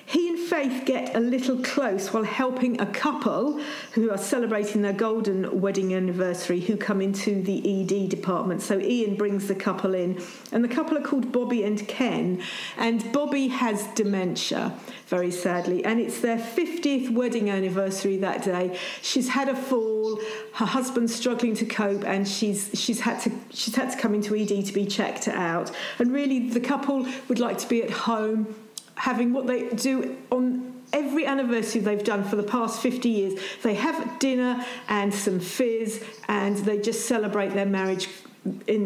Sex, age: female, 50-69